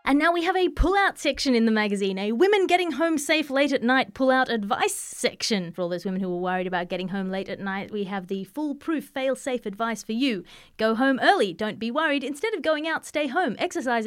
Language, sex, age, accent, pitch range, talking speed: English, female, 30-49, Australian, 215-280 Hz, 245 wpm